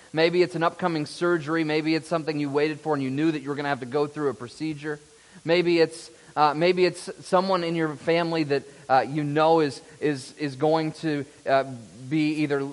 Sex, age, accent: male, 30-49, American